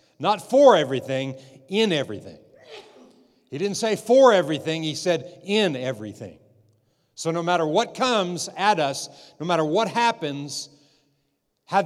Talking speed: 130 wpm